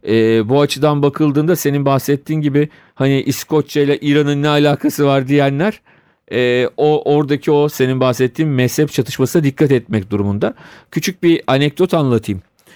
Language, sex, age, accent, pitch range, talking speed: Turkish, male, 40-59, native, 120-165 Hz, 140 wpm